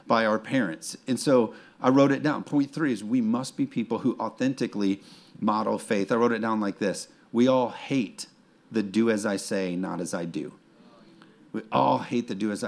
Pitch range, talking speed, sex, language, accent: 95-115 Hz, 210 wpm, male, English, American